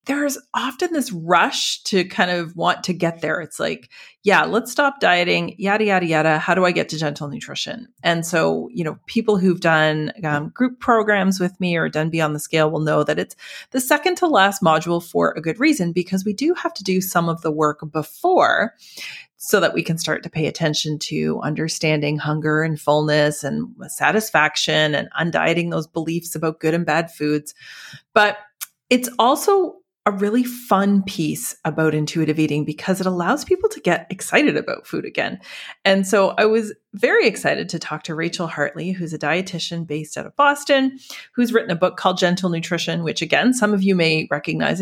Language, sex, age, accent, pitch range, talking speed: English, female, 30-49, American, 155-210 Hz, 195 wpm